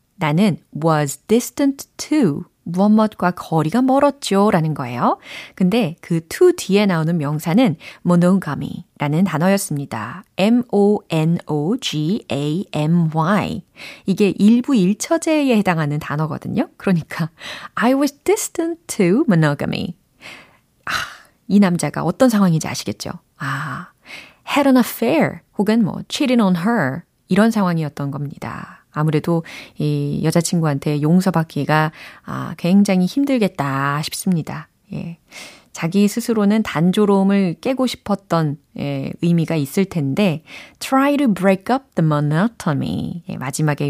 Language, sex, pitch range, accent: Korean, female, 155-220 Hz, native